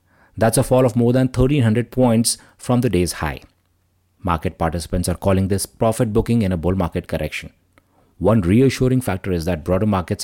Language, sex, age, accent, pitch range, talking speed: English, male, 30-49, Indian, 85-110 Hz, 180 wpm